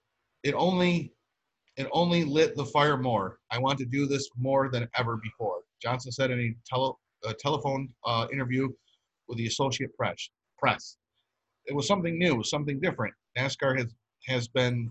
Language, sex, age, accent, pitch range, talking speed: English, male, 40-59, American, 120-140 Hz, 165 wpm